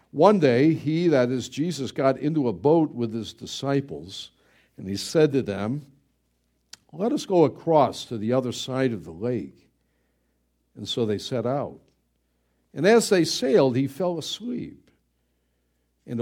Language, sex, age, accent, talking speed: English, male, 60-79, American, 155 wpm